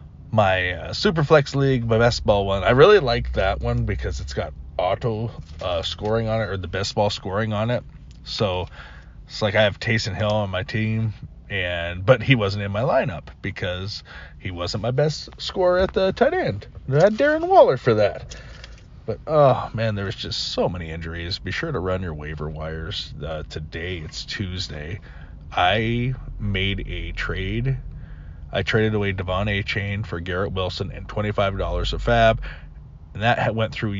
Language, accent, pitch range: English, American, 90-120 Hz